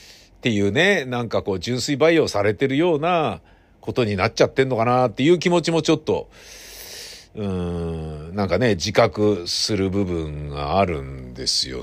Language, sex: Japanese, male